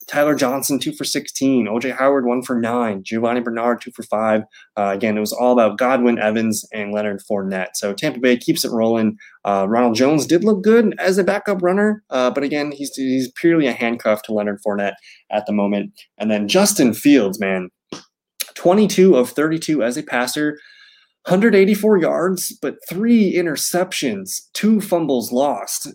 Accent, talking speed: American, 175 wpm